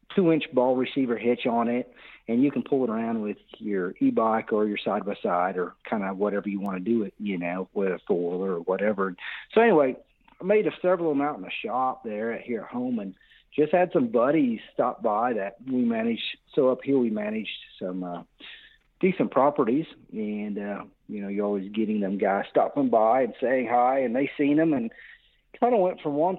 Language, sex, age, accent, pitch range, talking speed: English, male, 50-69, American, 110-170 Hz, 215 wpm